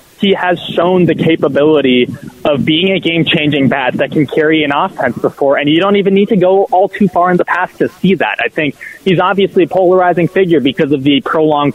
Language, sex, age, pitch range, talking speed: English, male, 20-39, 145-185 Hz, 220 wpm